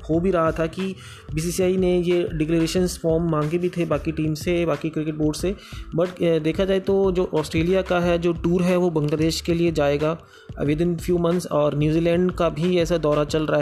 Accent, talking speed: native, 210 wpm